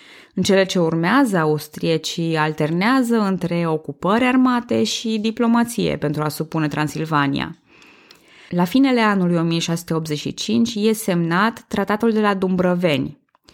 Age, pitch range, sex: 20-39, 155-220 Hz, female